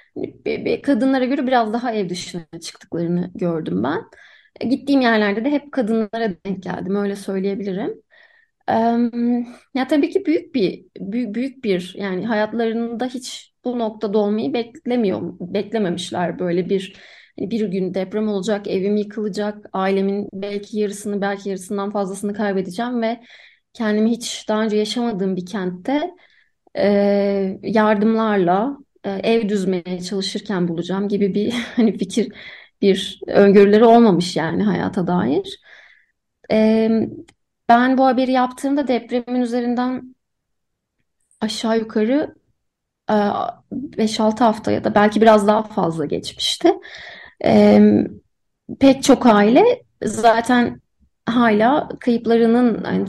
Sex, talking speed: female, 115 wpm